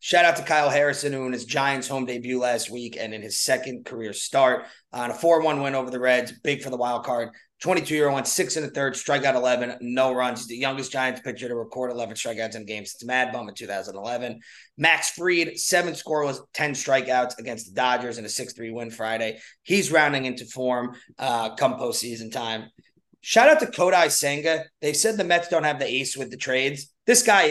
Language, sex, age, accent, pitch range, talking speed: English, male, 30-49, American, 125-145 Hz, 225 wpm